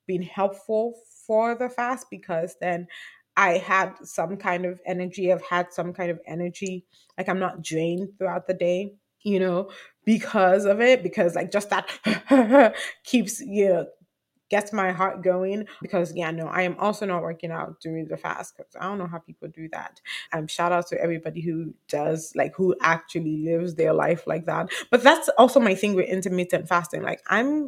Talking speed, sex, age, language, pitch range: 190 wpm, female, 20-39, English, 170-210 Hz